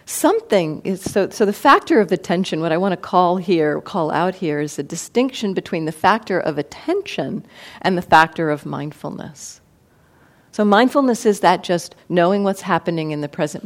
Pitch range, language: 165-215 Hz, English